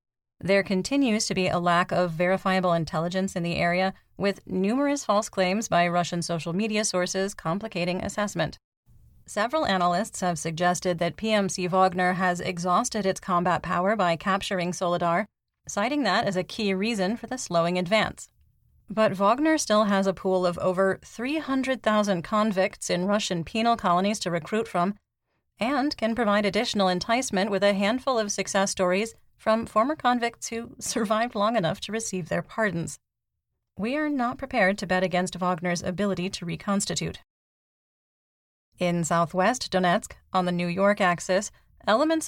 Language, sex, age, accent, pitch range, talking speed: English, female, 30-49, American, 180-215 Hz, 150 wpm